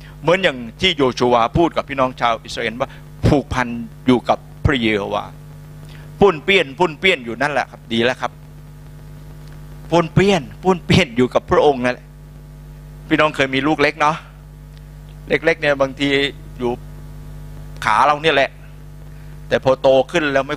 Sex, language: male, Thai